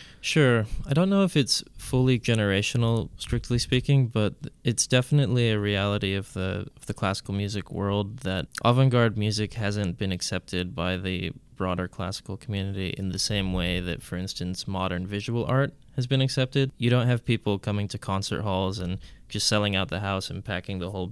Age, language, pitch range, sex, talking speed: 20-39, English, 95-120 Hz, male, 180 wpm